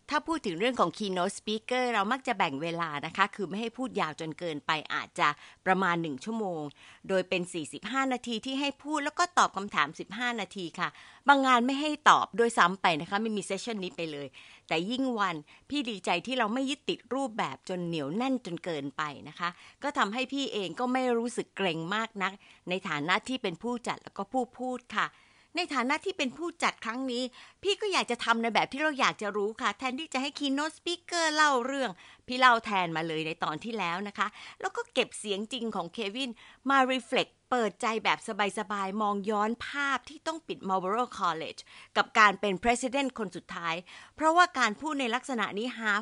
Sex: female